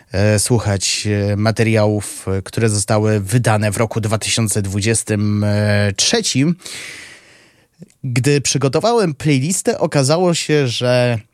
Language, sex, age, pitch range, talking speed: Polish, male, 20-39, 105-140 Hz, 75 wpm